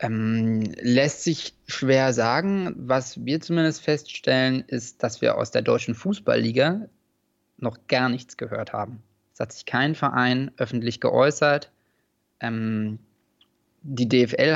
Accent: German